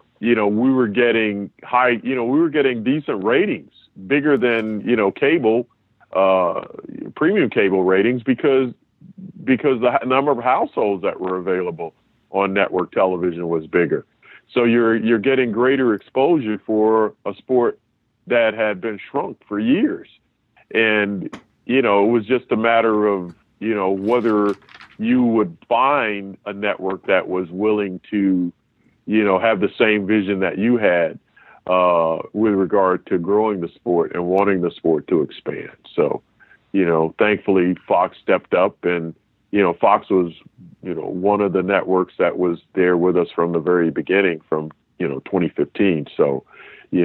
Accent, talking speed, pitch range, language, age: American, 160 wpm, 90-115 Hz, English, 40-59